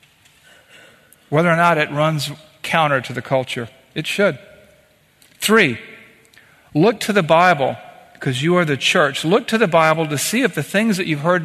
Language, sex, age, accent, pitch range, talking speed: English, male, 50-69, American, 135-185 Hz, 175 wpm